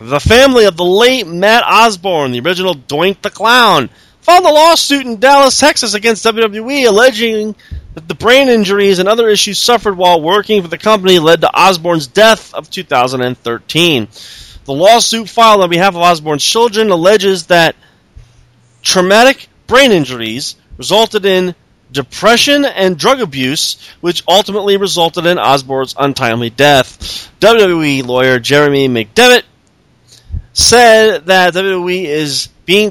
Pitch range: 140-210 Hz